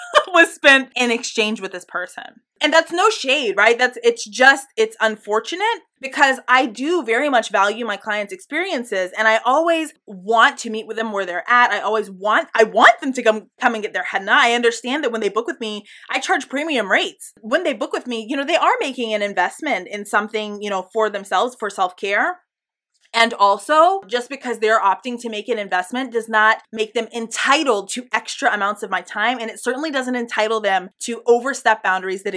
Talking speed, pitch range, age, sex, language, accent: 215 wpm, 210-285 Hz, 20-39, female, English, American